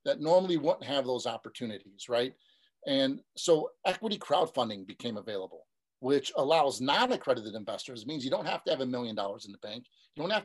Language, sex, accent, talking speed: English, male, American, 185 wpm